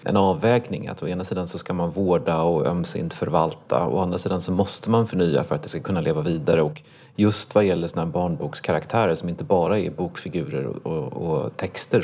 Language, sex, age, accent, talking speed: Swedish, male, 30-49, native, 210 wpm